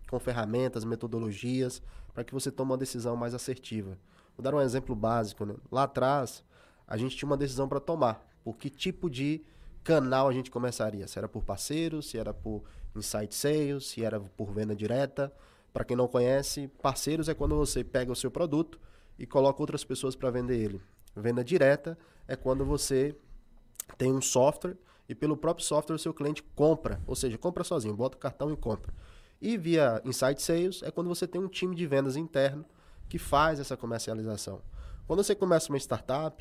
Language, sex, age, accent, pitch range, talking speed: Portuguese, male, 20-39, Brazilian, 115-150 Hz, 190 wpm